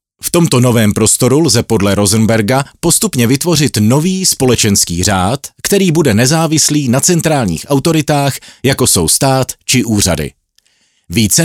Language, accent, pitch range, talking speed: Czech, native, 105-160 Hz, 125 wpm